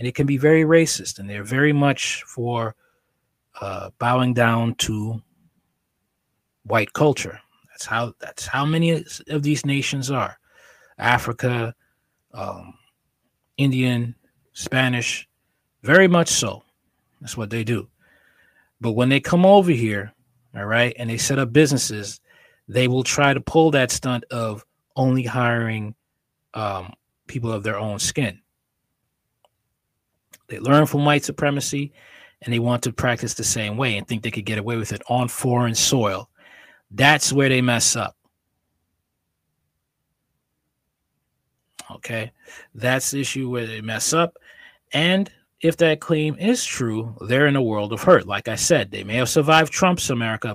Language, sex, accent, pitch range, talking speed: English, male, American, 110-140 Hz, 145 wpm